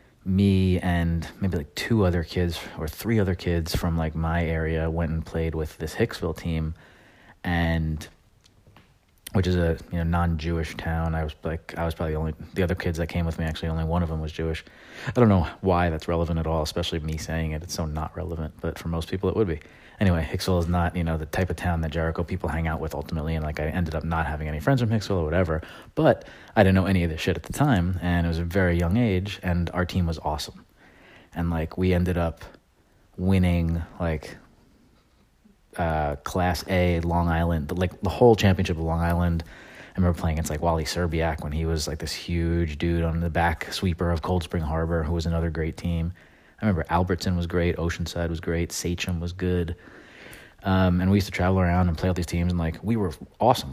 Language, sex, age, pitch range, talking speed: English, male, 30-49, 80-90 Hz, 225 wpm